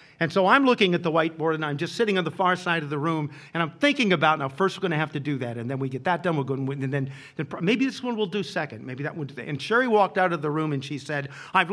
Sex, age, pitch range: male, 50-69, 140-200 Hz